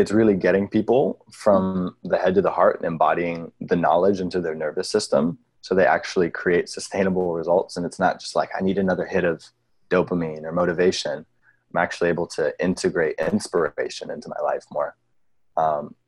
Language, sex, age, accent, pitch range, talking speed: English, male, 20-39, American, 85-100 Hz, 180 wpm